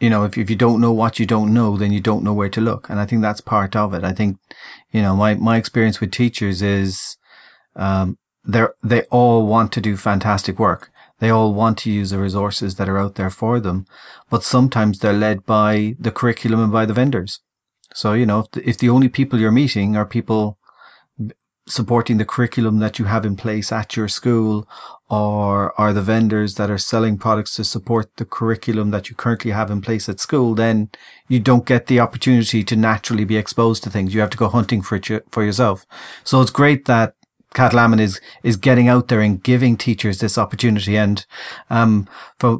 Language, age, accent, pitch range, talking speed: English, 40-59, Irish, 105-120 Hz, 215 wpm